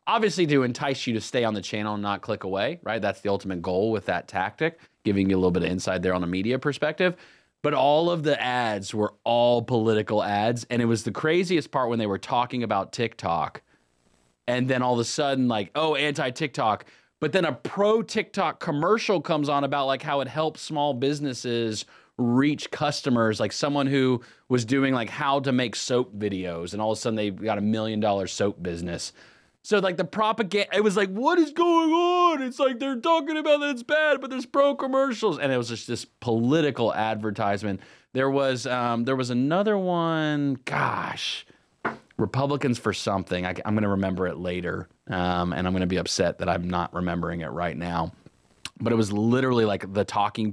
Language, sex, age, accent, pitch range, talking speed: English, male, 30-49, American, 100-150 Hz, 200 wpm